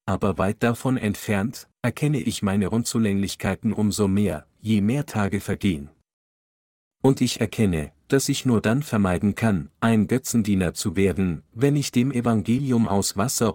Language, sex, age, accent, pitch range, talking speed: German, male, 50-69, German, 95-120 Hz, 145 wpm